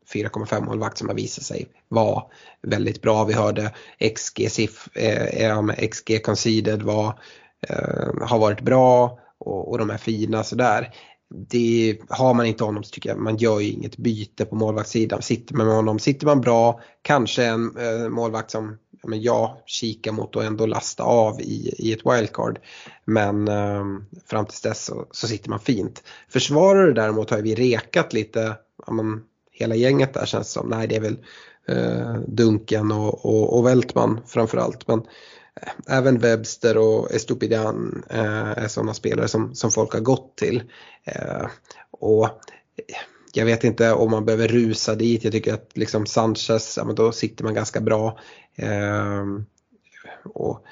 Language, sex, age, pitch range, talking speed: Swedish, male, 20-39, 110-115 Hz, 150 wpm